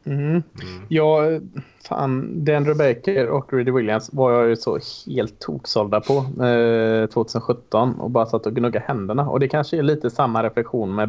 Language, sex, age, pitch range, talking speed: Swedish, male, 20-39, 115-140 Hz, 170 wpm